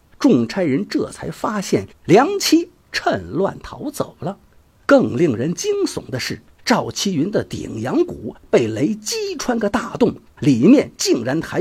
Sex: male